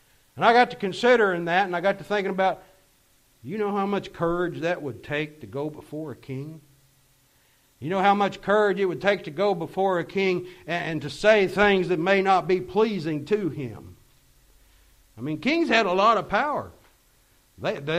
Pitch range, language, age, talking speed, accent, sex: 140-205 Hz, English, 60-79, 195 wpm, American, male